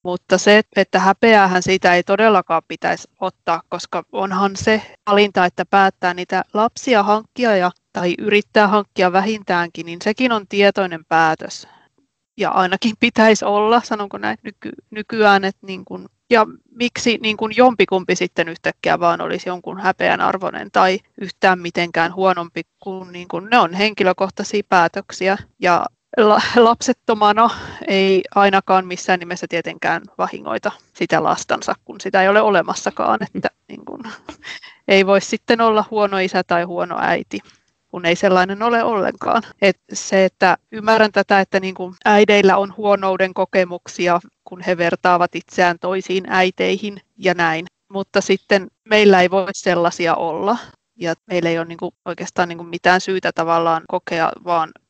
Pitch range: 180-210 Hz